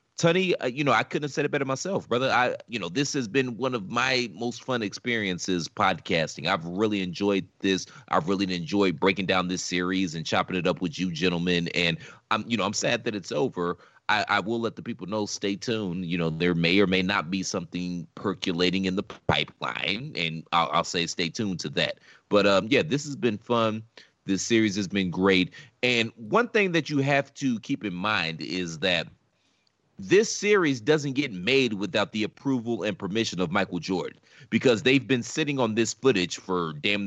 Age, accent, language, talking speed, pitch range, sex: 30-49, American, English, 205 wpm, 95-135 Hz, male